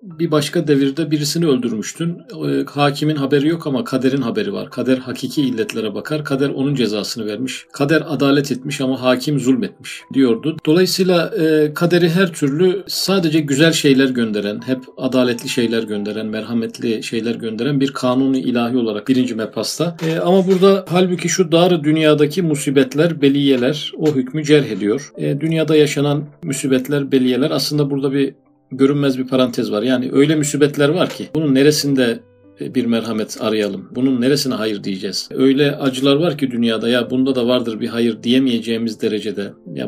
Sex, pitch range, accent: male, 120-150 Hz, native